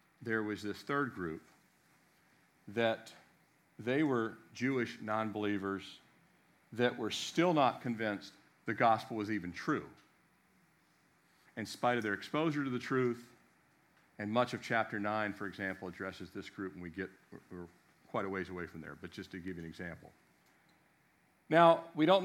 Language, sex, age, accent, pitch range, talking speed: English, male, 50-69, American, 105-135 Hz, 155 wpm